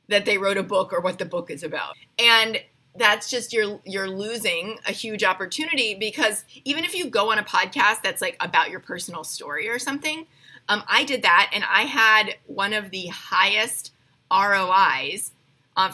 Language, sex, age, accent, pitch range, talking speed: English, female, 30-49, American, 190-240 Hz, 185 wpm